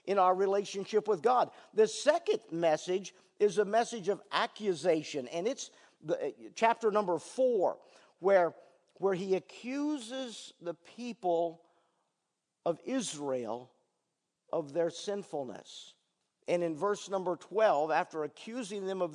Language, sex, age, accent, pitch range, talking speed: English, male, 50-69, American, 150-200 Hz, 120 wpm